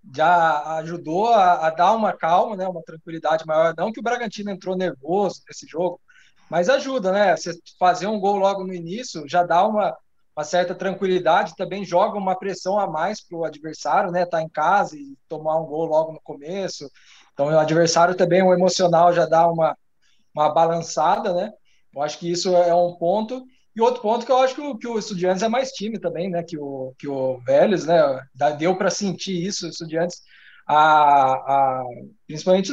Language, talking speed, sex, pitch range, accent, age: Portuguese, 190 wpm, male, 165-200 Hz, Brazilian, 20-39